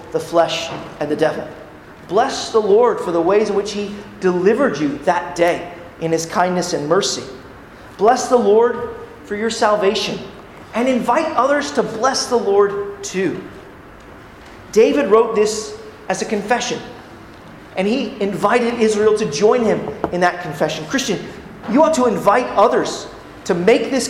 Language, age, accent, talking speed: English, 30-49, American, 155 wpm